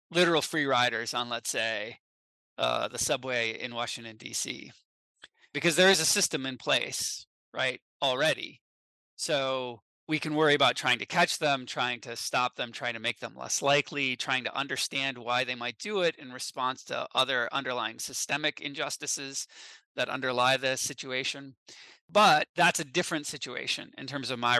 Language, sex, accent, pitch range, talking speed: English, male, American, 125-160 Hz, 165 wpm